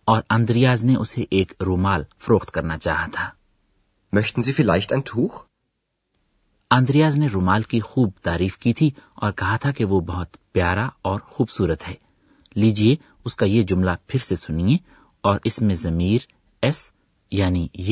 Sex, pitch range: male, 95-130 Hz